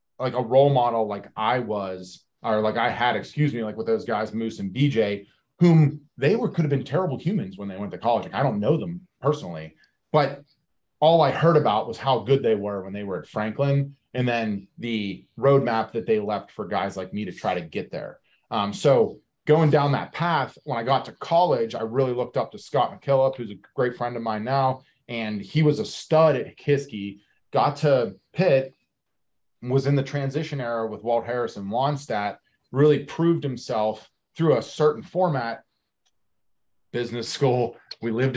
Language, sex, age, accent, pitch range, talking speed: English, male, 30-49, American, 115-140 Hz, 195 wpm